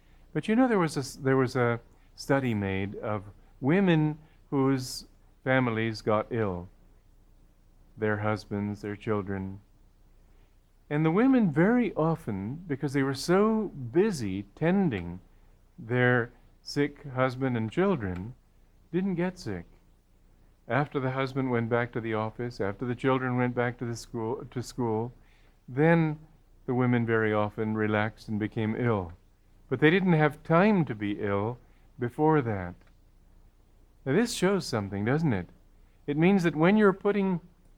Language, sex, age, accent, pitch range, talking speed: English, male, 50-69, American, 100-155 Hz, 140 wpm